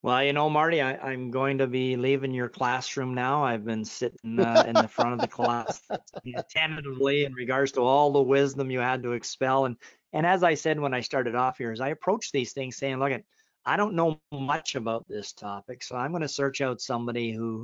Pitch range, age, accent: 115-135 Hz, 40-59, American